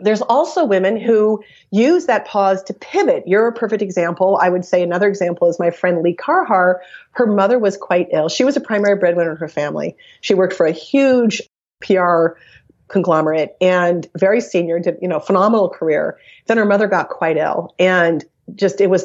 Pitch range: 175-230 Hz